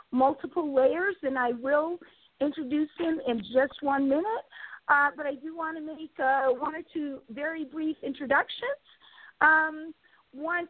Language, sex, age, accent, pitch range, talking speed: English, female, 50-69, American, 260-310 Hz, 150 wpm